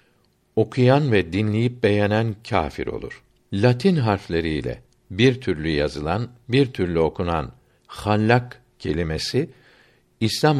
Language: Turkish